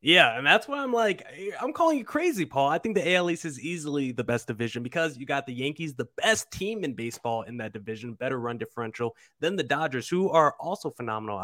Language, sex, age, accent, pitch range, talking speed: English, male, 20-39, American, 130-180 Hz, 230 wpm